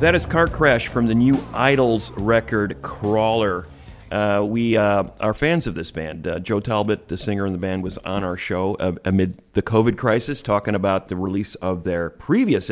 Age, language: 40-59, English